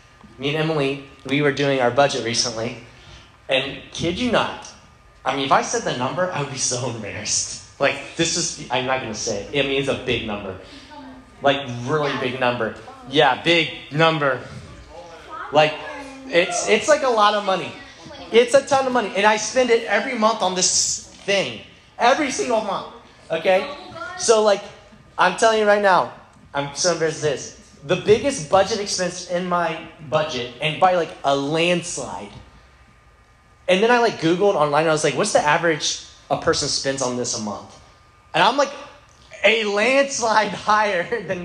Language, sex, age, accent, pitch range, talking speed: English, male, 30-49, American, 130-215 Hz, 175 wpm